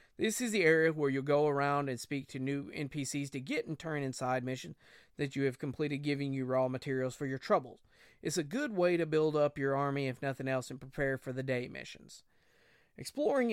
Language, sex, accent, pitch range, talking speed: English, male, American, 135-155 Hz, 215 wpm